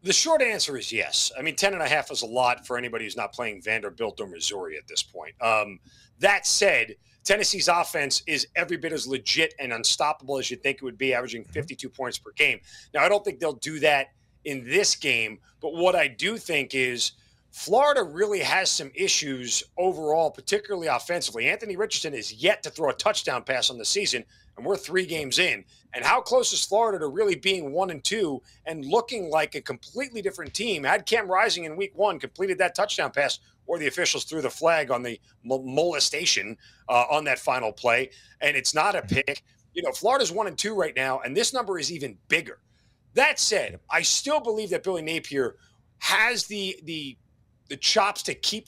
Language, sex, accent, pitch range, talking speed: English, male, American, 130-200 Hz, 200 wpm